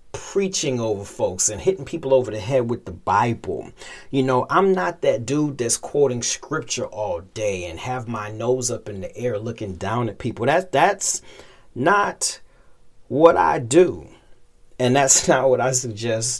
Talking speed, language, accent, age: 170 wpm, English, American, 40-59